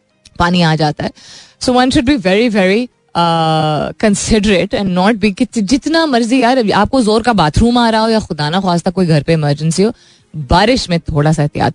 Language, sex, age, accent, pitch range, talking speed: Hindi, female, 20-39, native, 165-225 Hz, 180 wpm